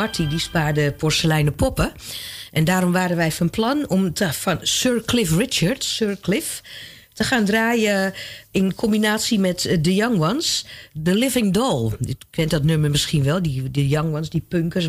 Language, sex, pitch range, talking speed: Dutch, female, 150-220 Hz, 175 wpm